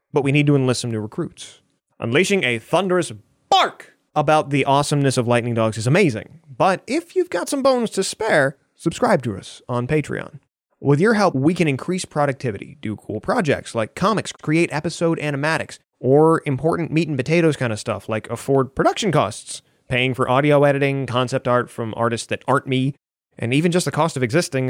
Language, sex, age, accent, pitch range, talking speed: English, male, 30-49, American, 125-165 Hz, 190 wpm